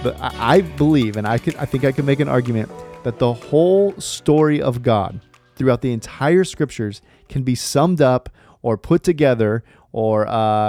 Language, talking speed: English, 180 wpm